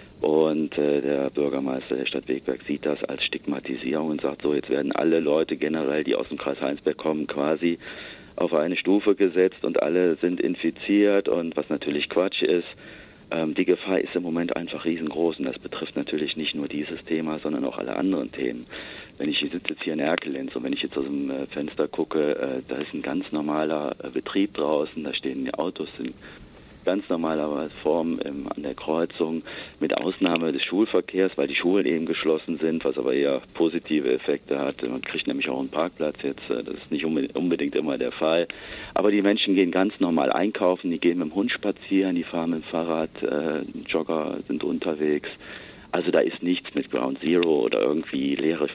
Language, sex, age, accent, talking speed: German, male, 50-69, German, 195 wpm